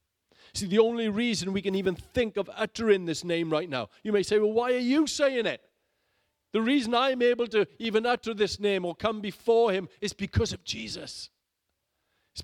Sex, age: male, 50-69